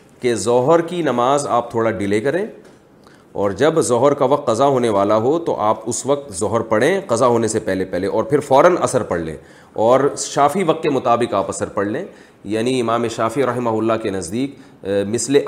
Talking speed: 200 wpm